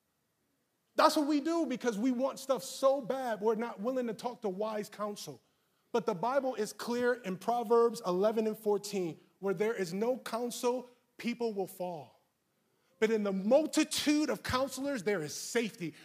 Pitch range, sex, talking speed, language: 190-245 Hz, male, 170 wpm, English